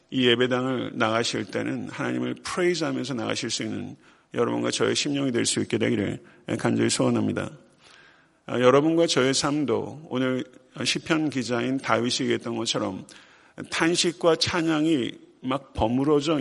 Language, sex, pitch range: Korean, male, 125-155 Hz